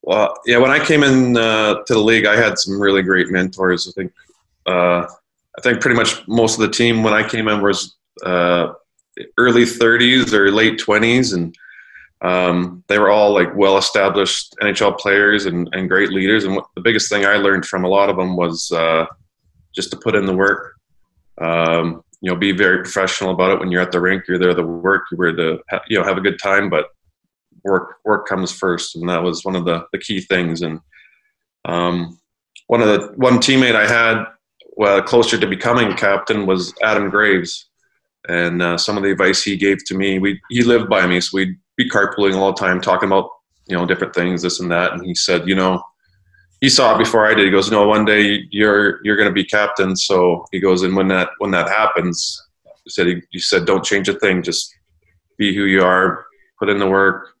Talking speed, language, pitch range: 215 wpm, English, 90-105 Hz